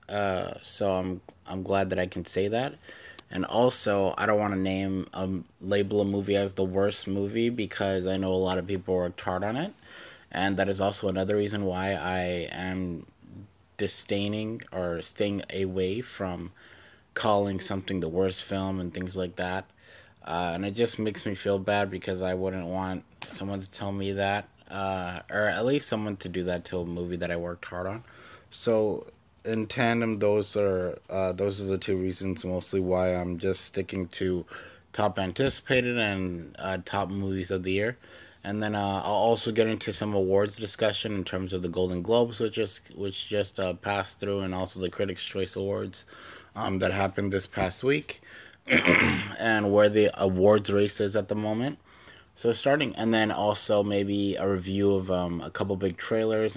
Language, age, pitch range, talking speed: English, 20-39, 95-105 Hz, 185 wpm